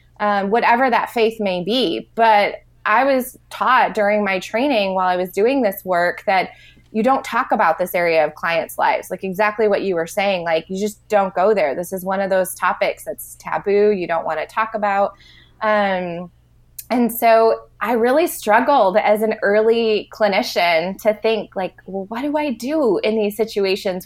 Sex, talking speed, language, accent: female, 190 wpm, English, American